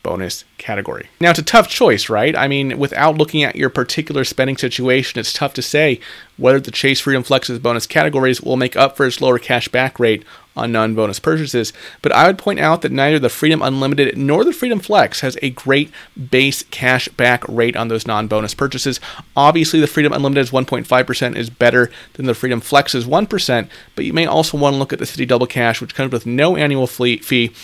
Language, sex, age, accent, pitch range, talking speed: English, male, 30-49, American, 115-140 Hz, 205 wpm